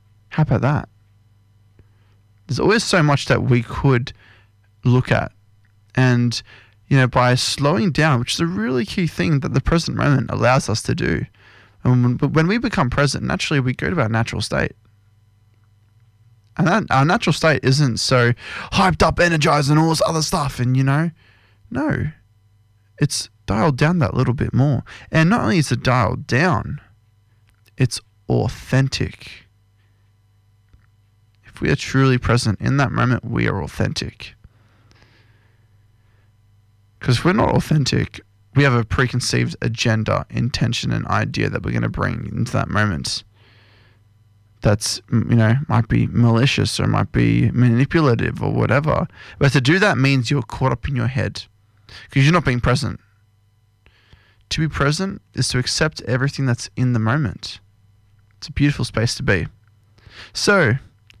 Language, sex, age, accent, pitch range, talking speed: English, male, 20-39, Australian, 105-135 Hz, 155 wpm